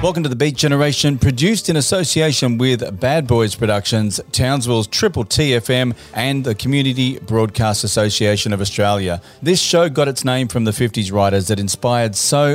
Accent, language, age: Australian, English, 30-49